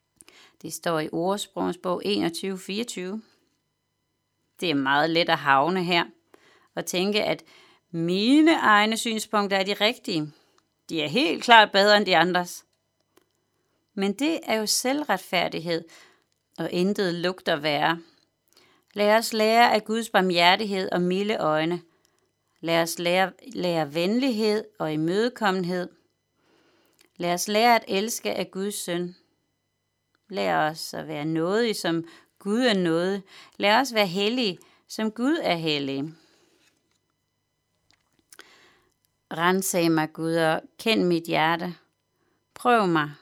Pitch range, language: 165-215 Hz, Danish